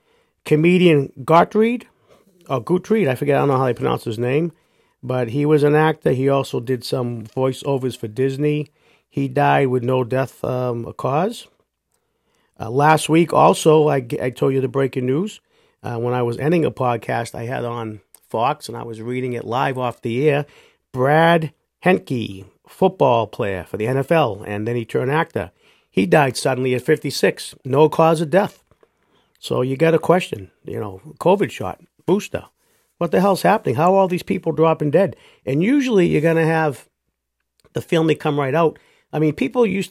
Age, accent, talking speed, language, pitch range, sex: 50-69, American, 185 wpm, English, 125-160 Hz, male